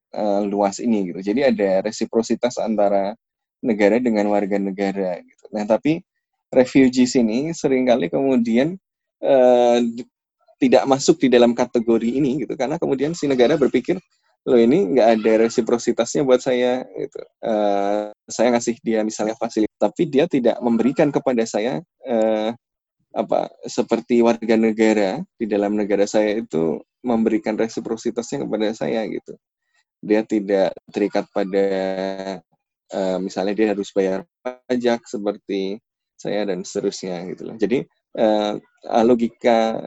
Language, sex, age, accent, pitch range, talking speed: Indonesian, male, 10-29, native, 100-120 Hz, 130 wpm